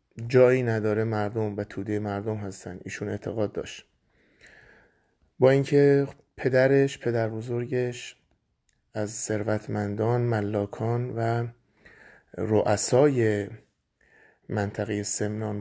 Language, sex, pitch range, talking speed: Persian, male, 105-120 Hz, 80 wpm